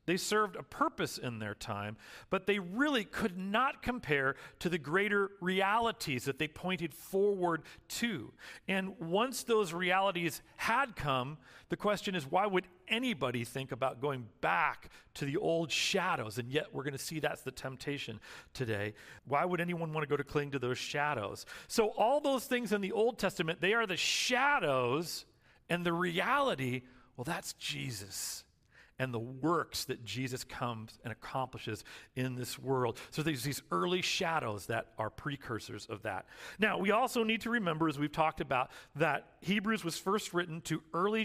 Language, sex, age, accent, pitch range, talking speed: English, male, 40-59, American, 130-190 Hz, 170 wpm